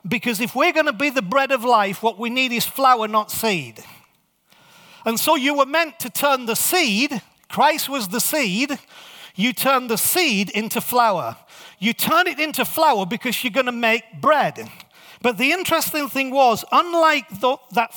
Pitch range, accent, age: 230-295 Hz, British, 40-59